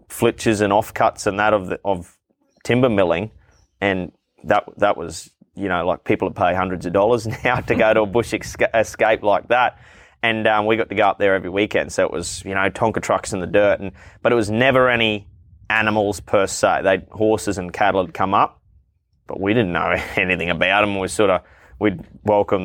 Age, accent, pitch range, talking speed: 20-39, Australian, 95-110 Hz, 215 wpm